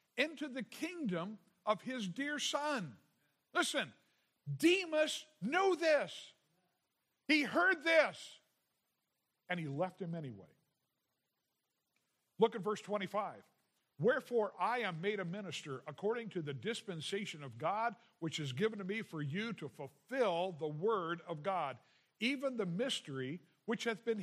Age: 50-69